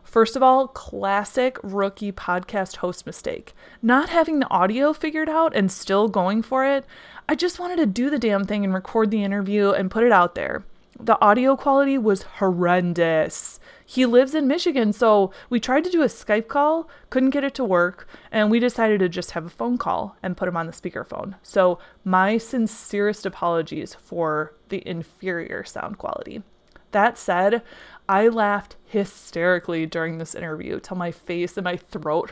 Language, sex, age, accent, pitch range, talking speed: English, female, 20-39, American, 180-245 Hz, 180 wpm